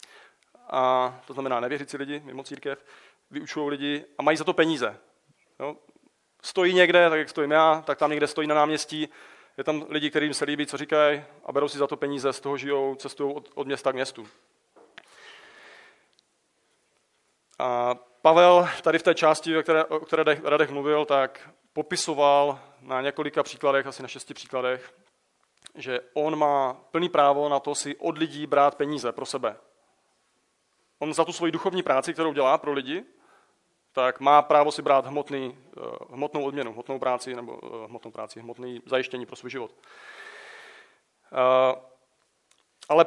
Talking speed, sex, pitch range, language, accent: 155 wpm, male, 135-155 Hz, Czech, native